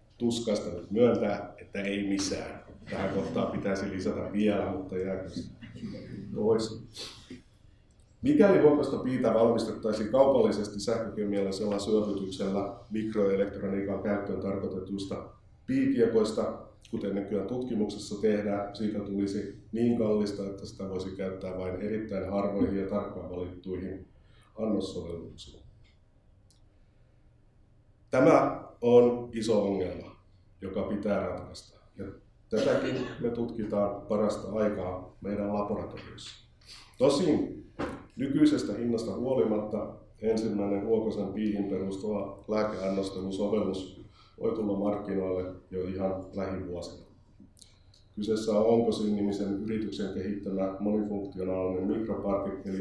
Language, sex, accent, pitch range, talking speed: Finnish, male, native, 95-110 Hz, 85 wpm